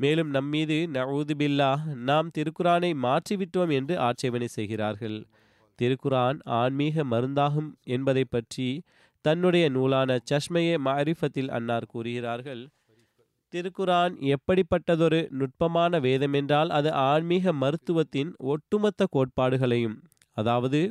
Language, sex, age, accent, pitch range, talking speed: Tamil, male, 30-49, native, 130-170 Hz, 85 wpm